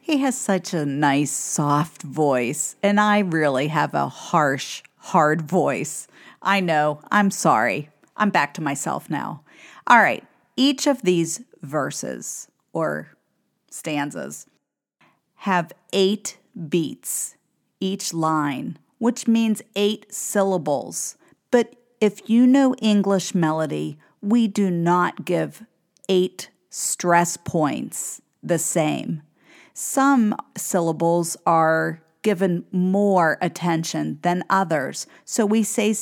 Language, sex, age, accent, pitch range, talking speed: English, female, 50-69, American, 160-220 Hz, 110 wpm